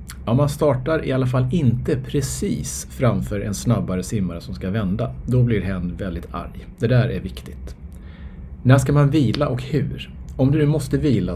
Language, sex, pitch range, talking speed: Swedish, male, 80-125 Hz, 190 wpm